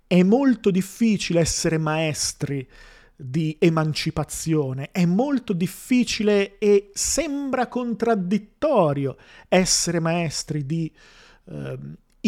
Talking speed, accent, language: 85 wpm, native, Italian